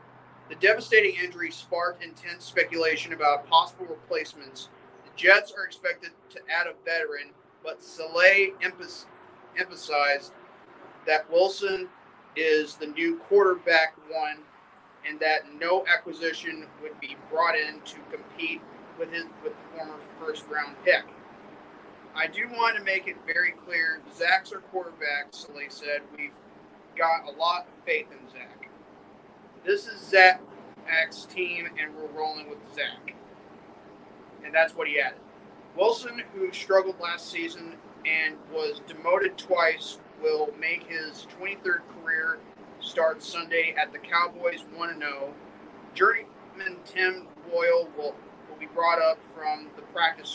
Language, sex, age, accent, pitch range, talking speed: English, male, 30-49, American, 160-235 Hz, 130 wpm